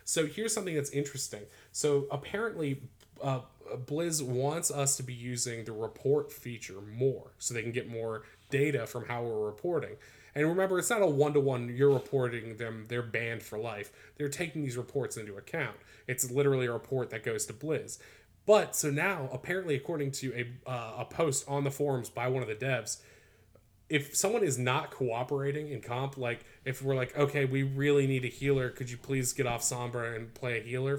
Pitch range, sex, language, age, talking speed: 120-145 Hz, male, English, 20-39, 195 wpm